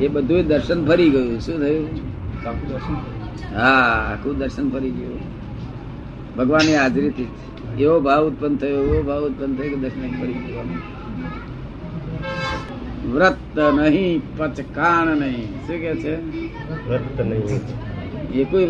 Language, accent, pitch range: Gujarati, native, 125-155 Hz